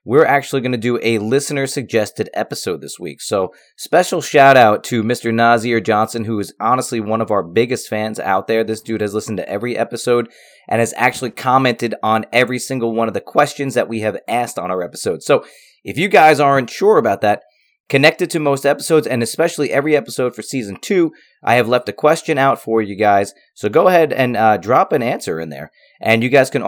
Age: 30-49